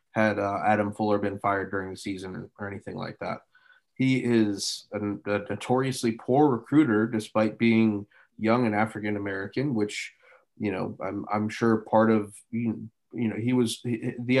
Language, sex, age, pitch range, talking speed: English, male, 20-39, 105-115 Hz, 165 wpm